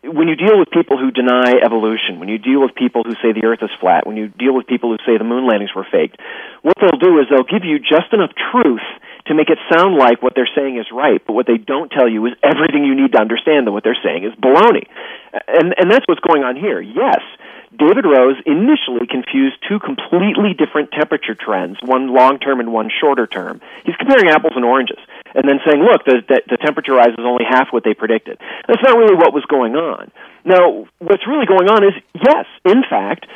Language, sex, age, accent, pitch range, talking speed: English, male, 40-59, American, 125-185 Hz, 230 wpm